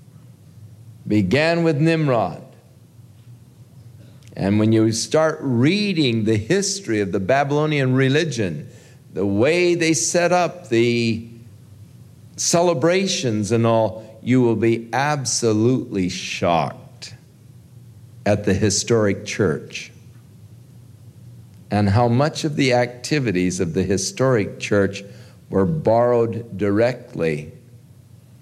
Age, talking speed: 50-69, 95 wpm